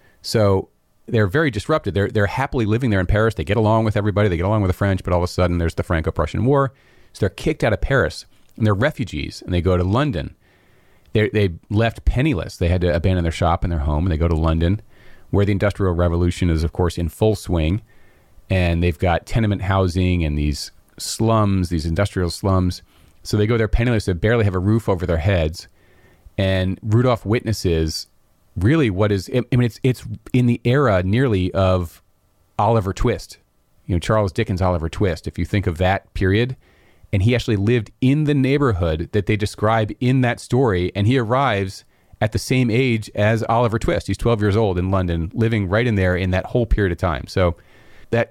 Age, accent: 40-59, American